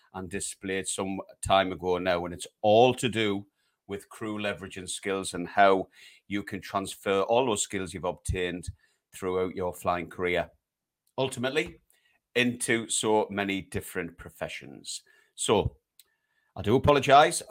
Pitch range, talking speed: 90-110 Hz, 135 wpm